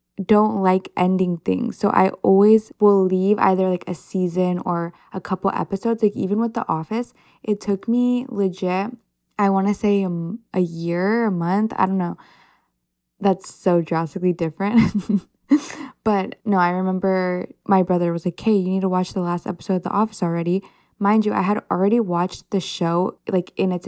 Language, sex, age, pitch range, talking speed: English, female, 10-29, 175-205 Hz, 180 wpm